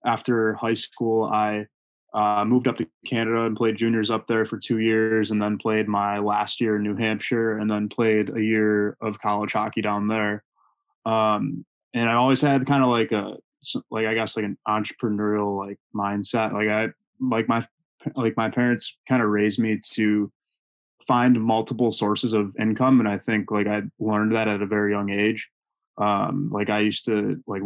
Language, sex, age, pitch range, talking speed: English, male, 20-39, 105-115 Hz, 190 wpm